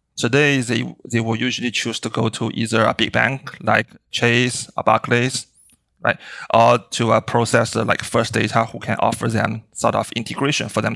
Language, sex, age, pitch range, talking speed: English, male, 30-49, 115-130 Hz, 185 wpm